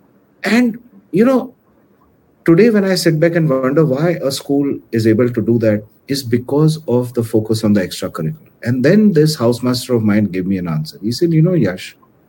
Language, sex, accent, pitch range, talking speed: English, male, Indian, 110-170 Hz, 200 wpm